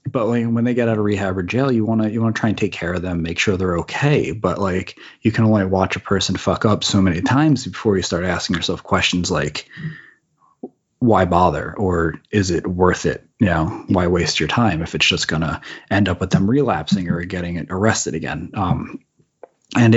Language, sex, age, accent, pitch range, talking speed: English, male, 30-49, American, 90-115 Hz, 215 wpm